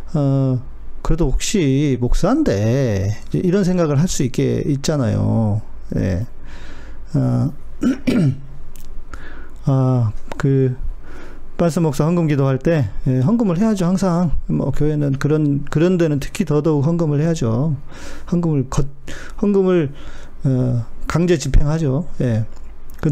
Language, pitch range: Korean, 130-185 Hz